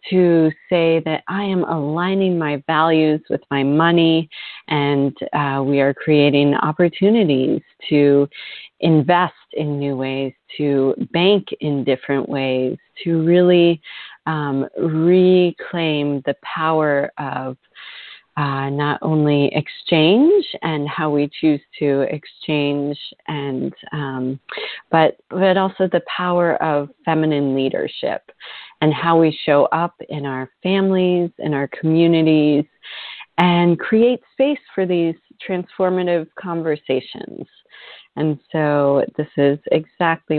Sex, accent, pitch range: female, American, 140-170 Hz